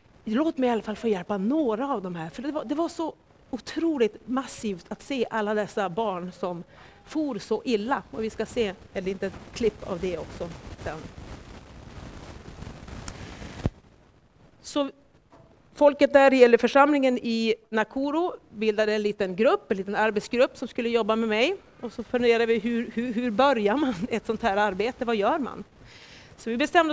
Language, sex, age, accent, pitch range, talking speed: Swedish, female, 40-59, native, 200-250 Hz, 170 wpm